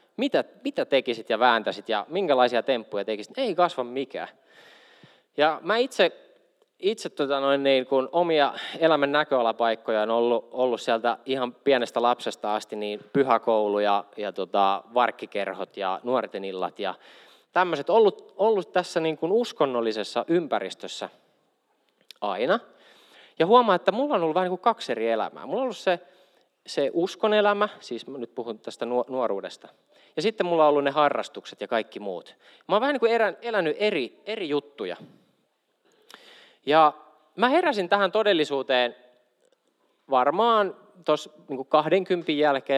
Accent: native